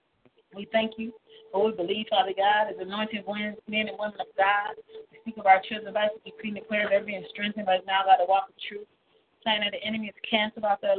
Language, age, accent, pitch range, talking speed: English, 40-59, American, 200-230 Hz, 270 wpm